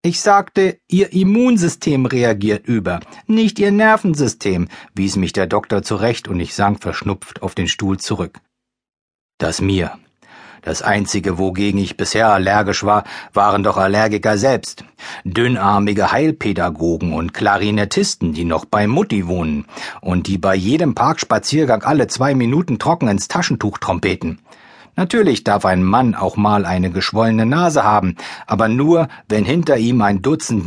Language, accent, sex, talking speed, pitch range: German, German, male, 145 wpm, 95-120 Hz